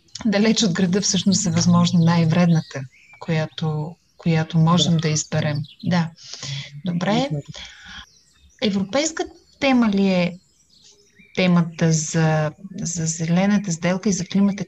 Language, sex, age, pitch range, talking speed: Bulgarian, female, 30-49, 175-215 Hz, 105 wpm